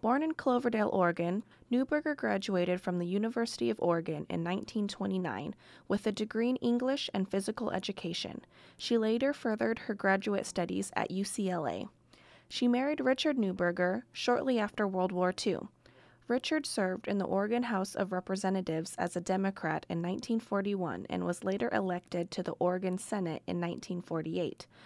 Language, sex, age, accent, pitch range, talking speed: English, female, 20-39, American, 180-230 Hz, 145 wpm